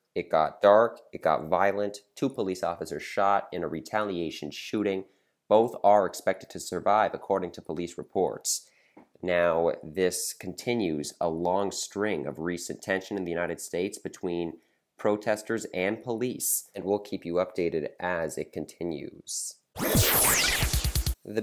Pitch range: 85-110 Hz